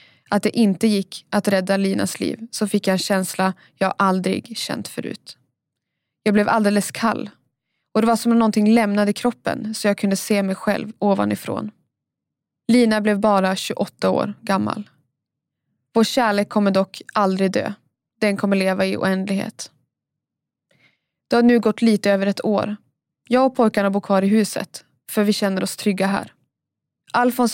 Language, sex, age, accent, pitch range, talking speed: English, female, 20-39, Swedish, 190-220 Hz, 165 wpm